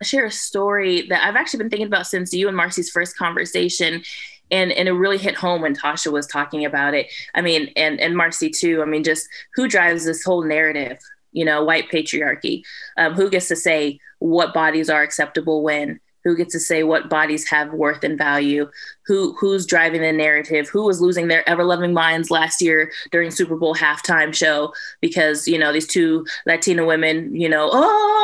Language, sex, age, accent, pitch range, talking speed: English, female, 20-39, American, 155-180 Hz, 200 wpm